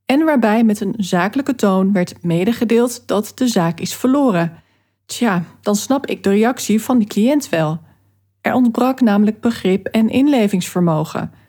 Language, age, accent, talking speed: Dutch, 40-59, Dutch, 150 wpm